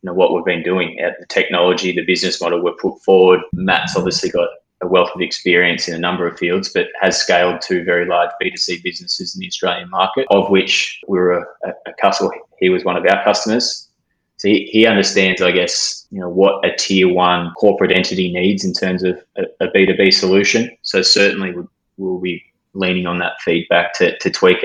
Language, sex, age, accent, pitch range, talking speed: English, male, 20-39, Australian, 90-100 Hz, 210 wpm